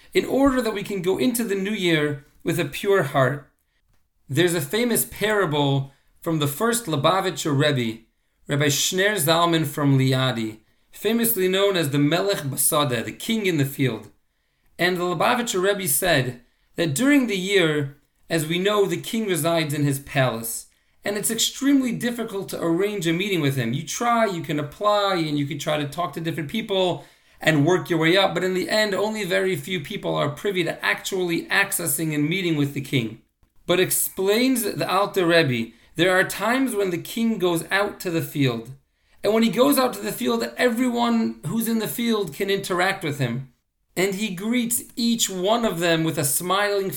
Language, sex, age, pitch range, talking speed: English, male, 40-59, 145-200 Hz, 190 wpm